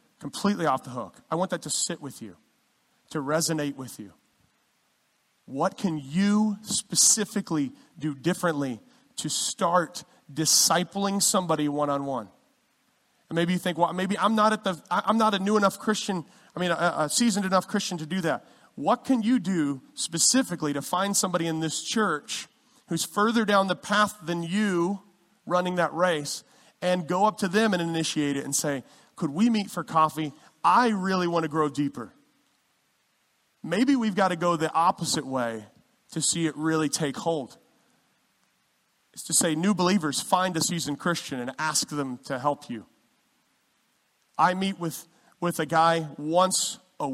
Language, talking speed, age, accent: English, 165 wpm, 30-49, American